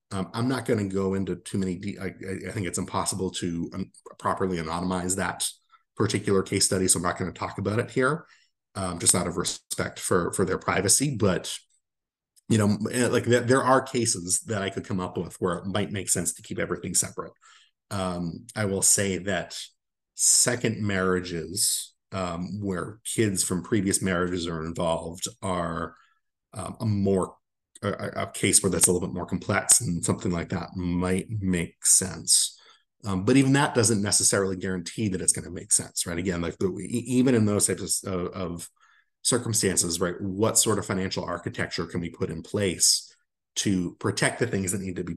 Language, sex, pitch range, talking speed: English, male, 90-110 Hz, 185 wpm